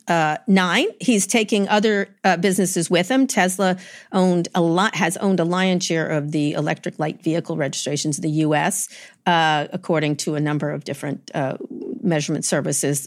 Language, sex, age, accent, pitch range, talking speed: English, female, 50-69, American, 155-190 Hz, 170 wpm